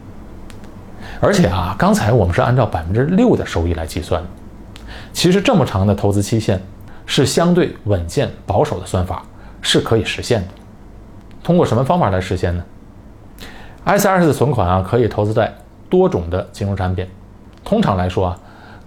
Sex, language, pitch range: male, Chinese, 95-125 Hz